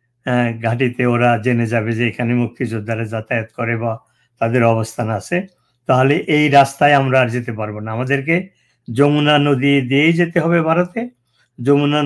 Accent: native